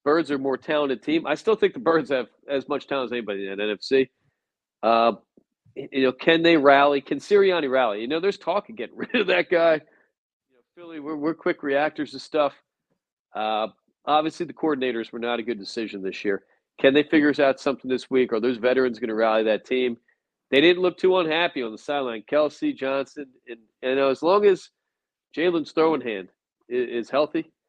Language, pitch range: English, 125-155 Hz